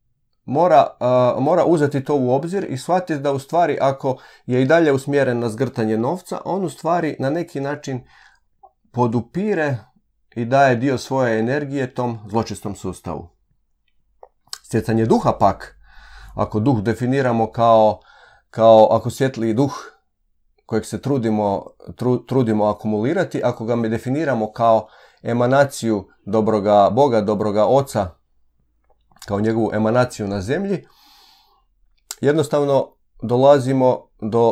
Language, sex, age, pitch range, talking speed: Croatian, male, 40-59, 105-135 Hz, 120 wpm